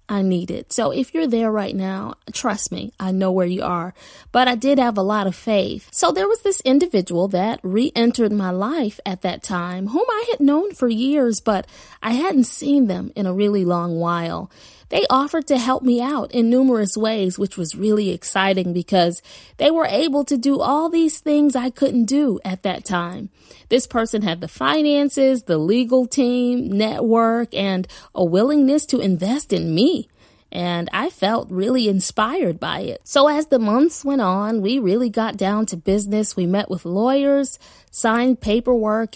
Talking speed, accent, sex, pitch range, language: 185 wpm, American, female, 190-260 Hz, English